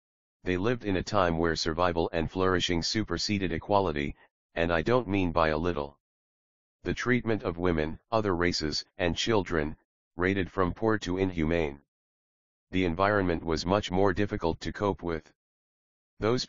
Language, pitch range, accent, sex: English, 80-95 Hz, American, male